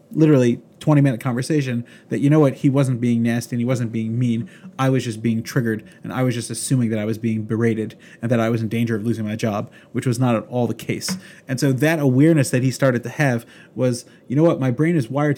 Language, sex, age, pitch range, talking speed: English, male, 30-49, 120-145 Hz, 255 wpm